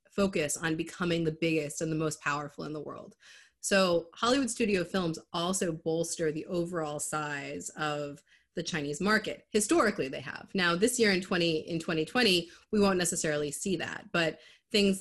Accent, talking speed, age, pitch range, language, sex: American, 170 wpm, 30-49, 155-185 Hz, English, female